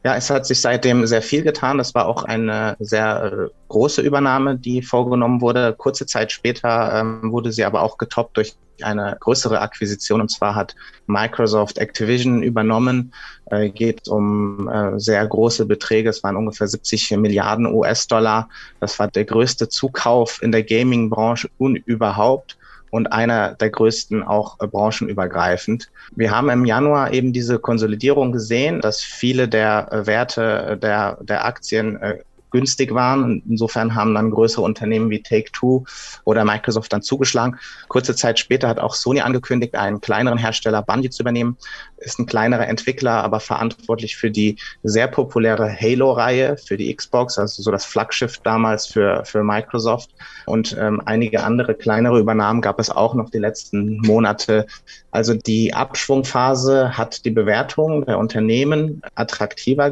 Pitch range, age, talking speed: 110-125 Hz, 30-49, 150 wpm